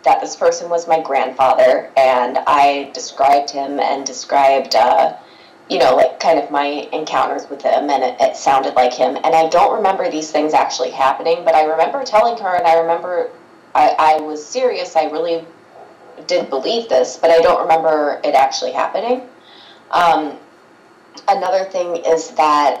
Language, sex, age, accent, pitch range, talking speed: English, female, 20-39, American, 140-175 Hz, 170 wpm